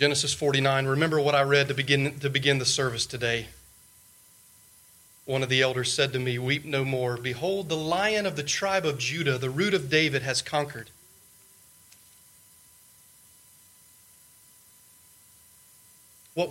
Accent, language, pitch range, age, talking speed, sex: American, English, 110-160 Hz, 40-59, 140 wpm, male